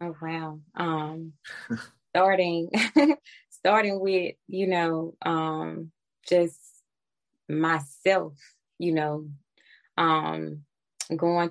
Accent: American